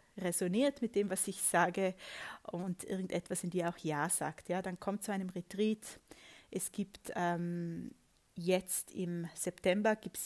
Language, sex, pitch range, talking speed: German, female, 175-215 Hz, 150 wpm